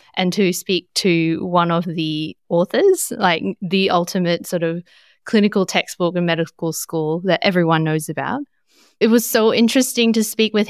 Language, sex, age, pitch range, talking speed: English, female, 20-39, 175-220 Hz, 165 wpm